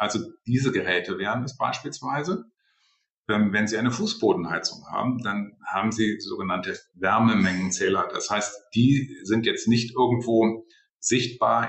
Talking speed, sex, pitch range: 125 wpm, male, 105-135 Hz